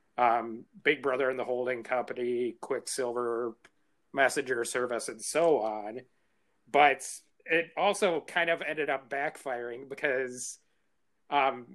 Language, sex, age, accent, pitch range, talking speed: English, male, 30-49, American, 120-150 Hz, 115 wpm